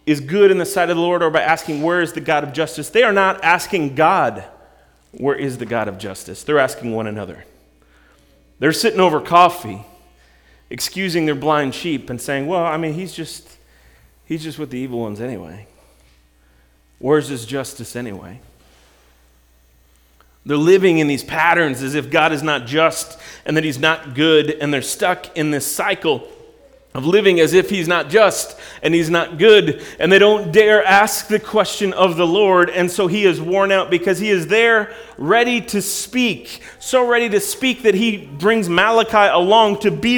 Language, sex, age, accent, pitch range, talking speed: English, male, 30-49, American, 125-200 Hz, 185 wpm